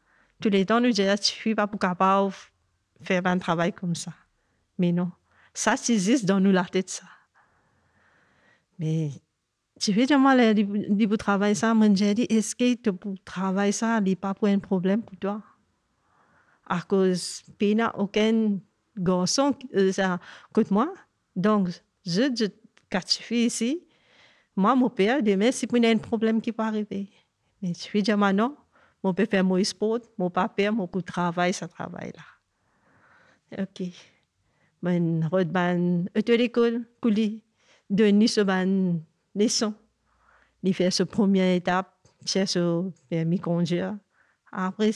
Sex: female